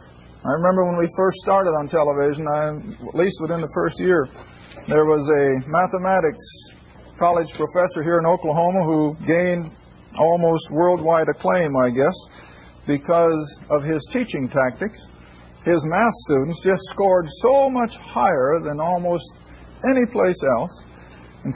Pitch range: 125-190 Hz